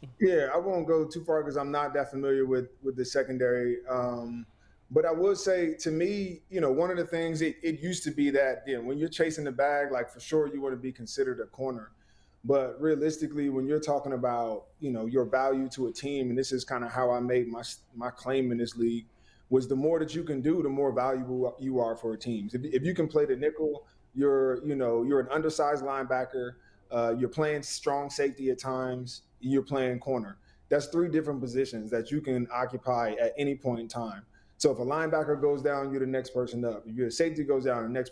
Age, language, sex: 20-39, English, male